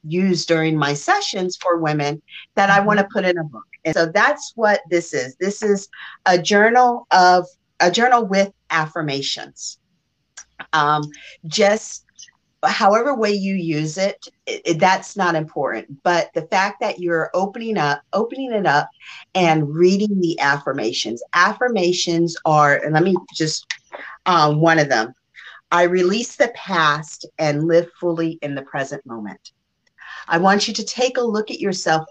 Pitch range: 150-195 Hz